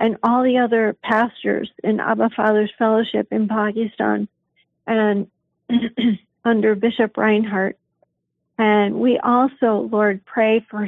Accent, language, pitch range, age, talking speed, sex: American, English, 195-225 Hz, 50-69, 115 wpm, female